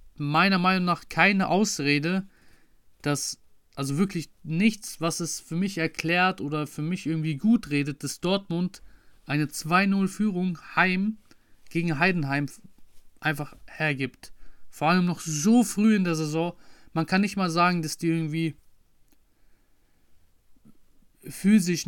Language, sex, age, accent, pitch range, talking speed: German, male, 30-49, German, 145-185 Hz, 125 wpm